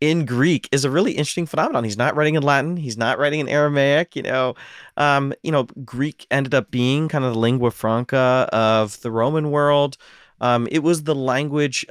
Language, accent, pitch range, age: English, American, 115-140 Hz, 30-49